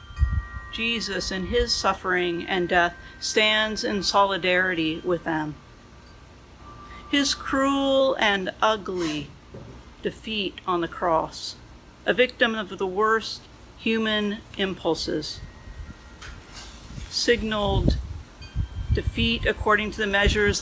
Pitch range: 160-210 Hz